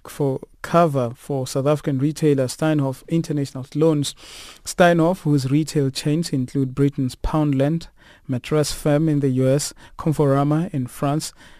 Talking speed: 125 wpm